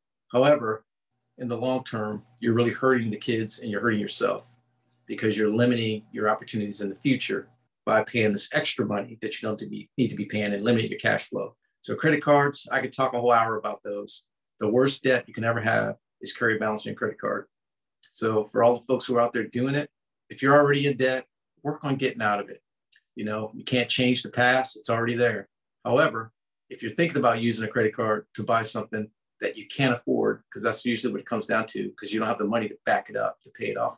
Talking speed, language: 235 wpm, English